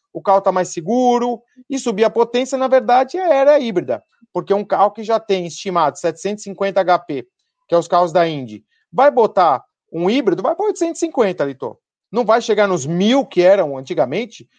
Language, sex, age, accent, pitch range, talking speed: Portuguese, male, 40-59, Brazilian, 175-250 Hz, 185 wpm